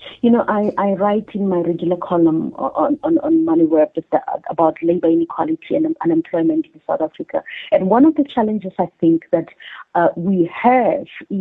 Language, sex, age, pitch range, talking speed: English, female, 30-49, 175-230 Hz, 175 wpm